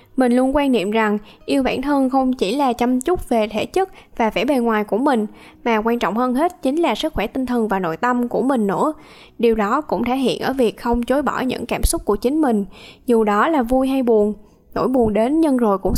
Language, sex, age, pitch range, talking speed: Vietnamese, female, 10-29, 220-270 Hz, 250 wpm